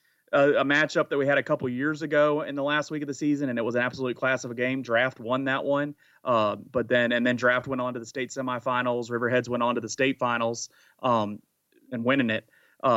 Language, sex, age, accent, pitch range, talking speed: English, male, 30-49, American, 125-145 Hz, 245 wpm